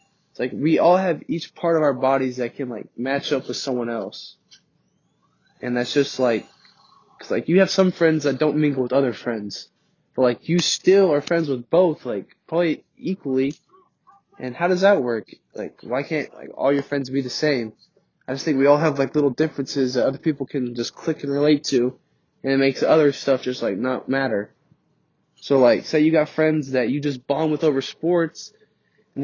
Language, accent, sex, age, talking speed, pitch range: English, American, male, 20-39, 205 wpm, 135-170 Hz